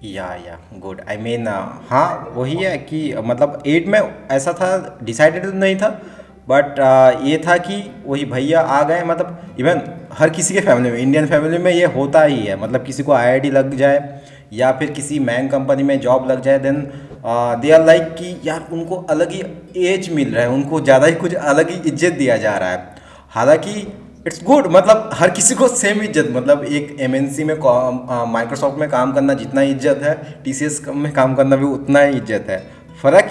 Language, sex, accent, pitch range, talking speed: Hindi, male, native, 130-175 Hz, 200 wpm